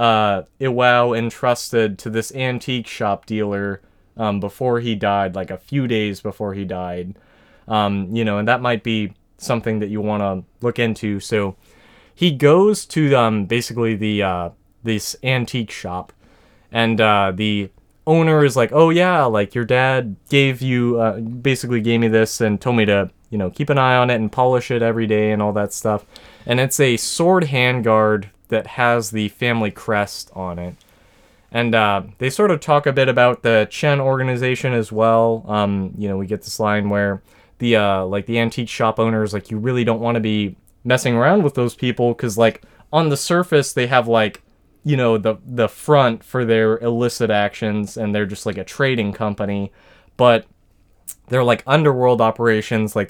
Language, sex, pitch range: English, male, 105-125 Hz